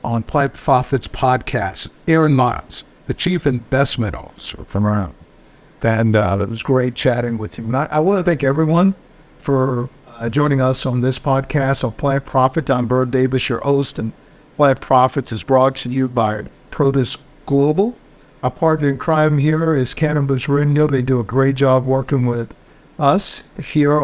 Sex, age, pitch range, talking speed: male, 60-79, 130-150 Hz, 170 wpm